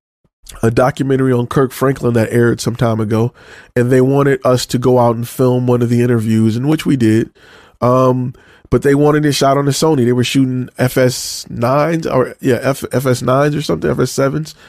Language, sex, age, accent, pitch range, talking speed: English, male, 20-39, American, 120-145 Hz, 190 wpm